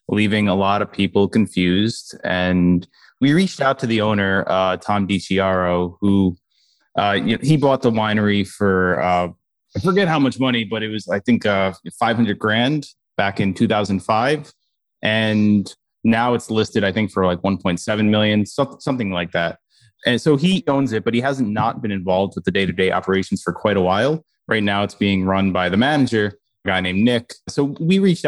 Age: 20-39